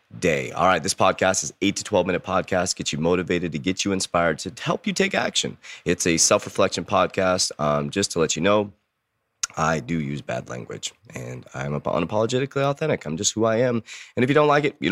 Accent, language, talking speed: American, English, 215 wpm